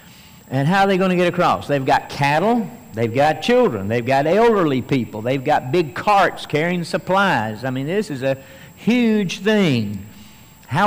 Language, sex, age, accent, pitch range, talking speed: English, male, 60-79, American, 140-205 Hz, 175 wpm